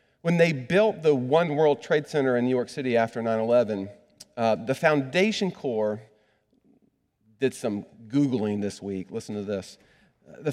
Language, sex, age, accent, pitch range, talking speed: English, male, 40-59, American, 130-190 Hz, 155 wpm